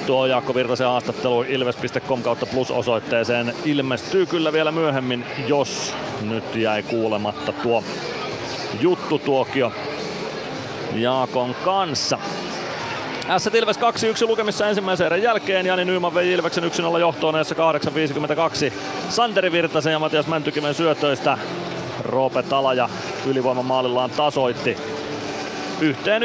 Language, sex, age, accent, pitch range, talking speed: Finnish, male, 30-49, native, 125-175 Hz, 100 wpm